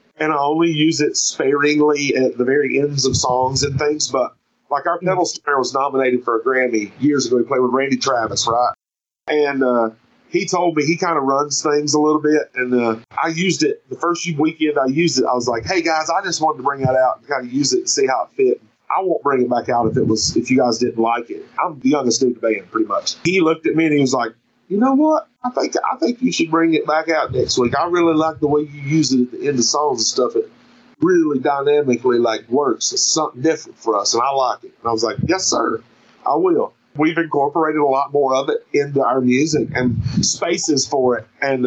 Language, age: English, 40-59